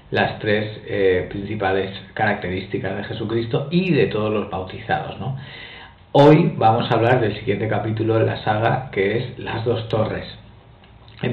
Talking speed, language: 155 wpm, Spanish